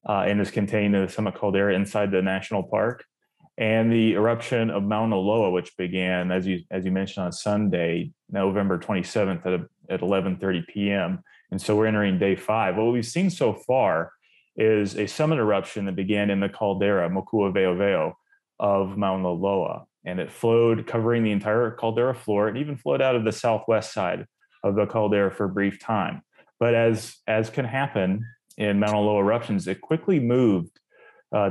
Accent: American